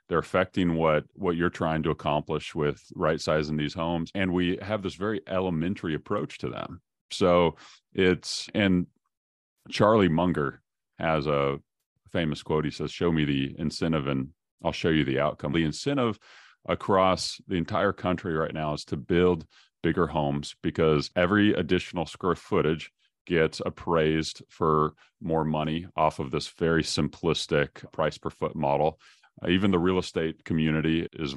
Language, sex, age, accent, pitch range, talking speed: English, male, 40-59, American, 75-90 Hz, 155 wpm